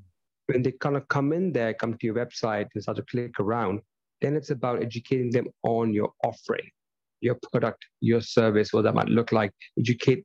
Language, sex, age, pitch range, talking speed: English, male, 30-49, 110-130 Hz, 200 wpm